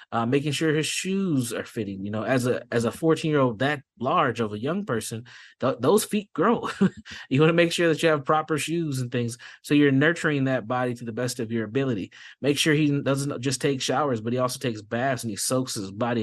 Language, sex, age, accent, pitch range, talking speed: English, male, 20-39, American, 115-150 Hz, 245 wpm